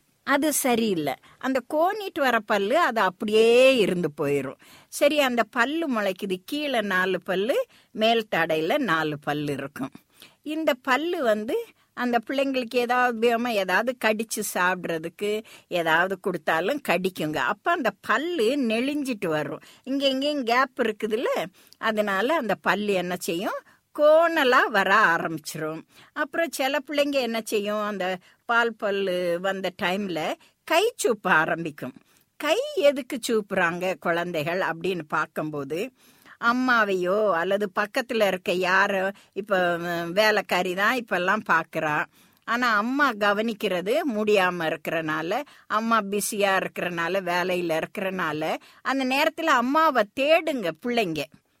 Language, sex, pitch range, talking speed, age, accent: Tamil, female, 180-255 Hz, 110 wpm, 50-69, native